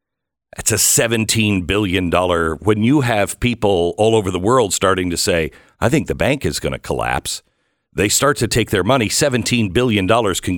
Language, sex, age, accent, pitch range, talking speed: English, male, 50-69, American, 90-120 Hz, 180 wpm